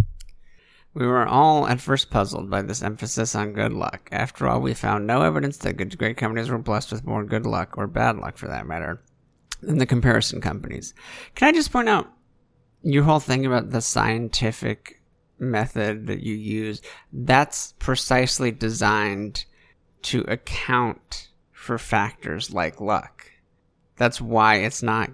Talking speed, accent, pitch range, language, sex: 155 wpm, American, 95-125 Hz, English, male